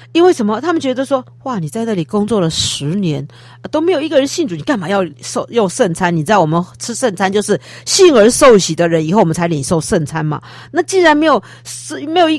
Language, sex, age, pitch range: Chinese, female, 50-69, 155-225 Hz